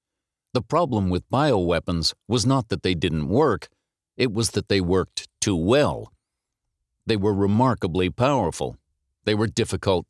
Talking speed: 145 wpm